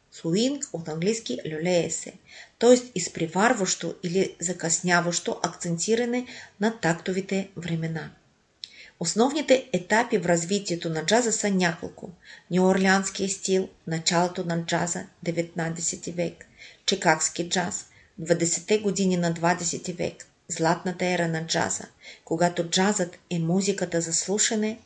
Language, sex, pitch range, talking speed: Bulgarian, female, 170-205 Hz, 105 wpm